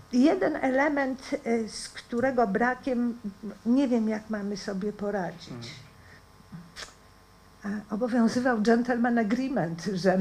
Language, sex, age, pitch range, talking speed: Polish, female, 50-69, 180-230 Hz, 90 wpm